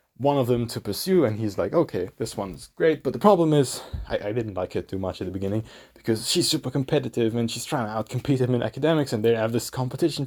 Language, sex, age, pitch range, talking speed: English, male, 20-39, 115-145 Hz, 250 wpm